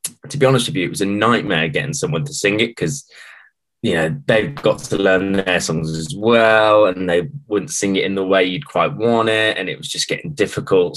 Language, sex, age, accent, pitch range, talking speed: English, male, 10-29, British, 90-130 Hz, 235 wpm